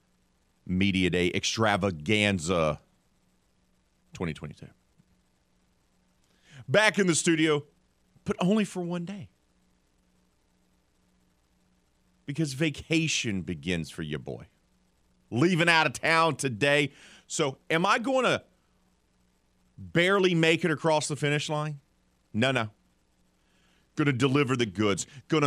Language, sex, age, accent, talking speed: English, male, 40-59, American, 105 wpm